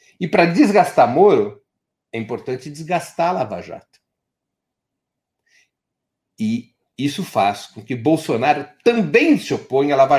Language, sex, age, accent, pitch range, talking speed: Portuguese, male, 60-79, Brazilian, 125-190 Hz, 125 wpm